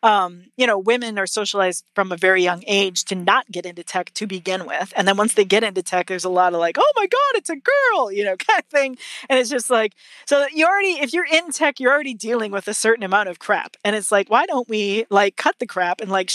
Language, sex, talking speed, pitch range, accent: English, female, 275 wpm, 190-245 Hz, American